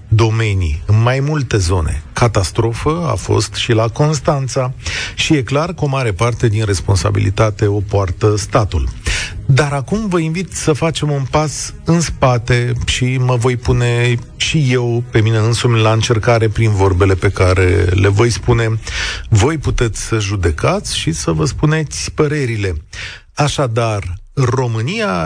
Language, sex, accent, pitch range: Romanian, male, native, 105-145 Hz